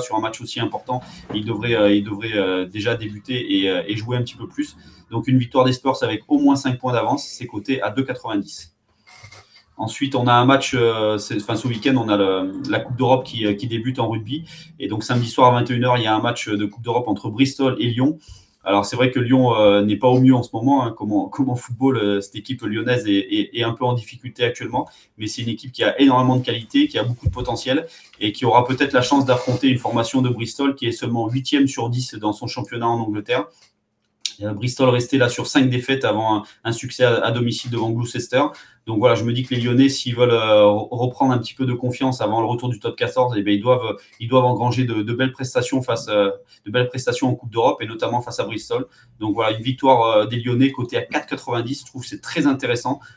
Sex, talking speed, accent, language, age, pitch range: male, 240 wpm, French, French, 20-39, 110-130 Hz